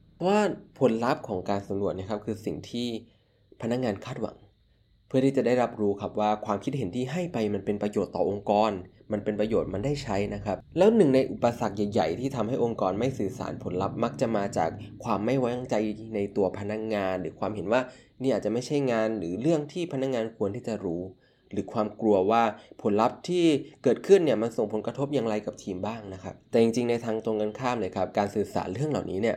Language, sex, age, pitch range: Thai, male, 20-39, 100-125 Hz